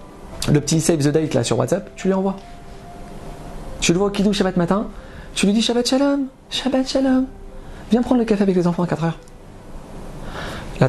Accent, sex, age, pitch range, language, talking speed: French, male, 40-59, 135-180 Hz, French, 200 wpm